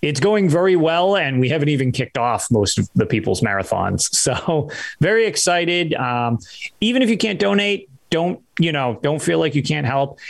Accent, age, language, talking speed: American, 30-49, English, 190 wpm